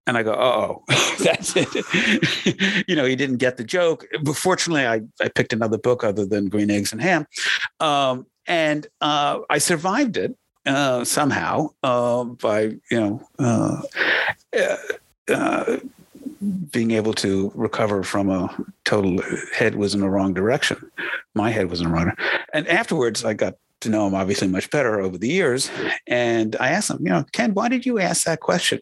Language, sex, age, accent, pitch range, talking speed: English, male, 50-69, American, 110-155 Hz, 185 wpm